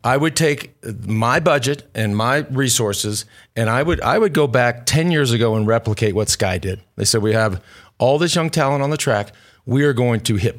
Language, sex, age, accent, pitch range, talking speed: English, male, 40-59, American, 110-140 Hz, 220 wpm